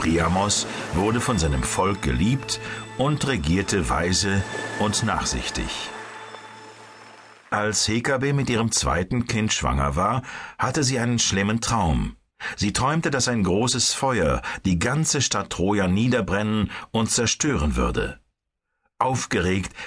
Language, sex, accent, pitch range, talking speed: German, male, German, 95-125 Hz, 120 wpm